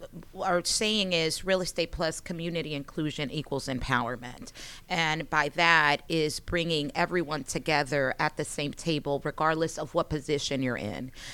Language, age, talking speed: English, 30-49, 145 wpm